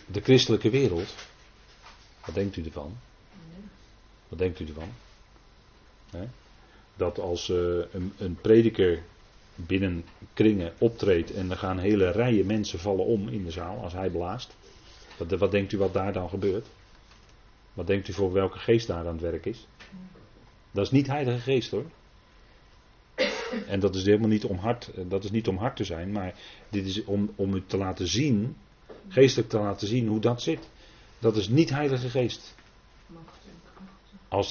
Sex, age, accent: male, 40-59, Dutch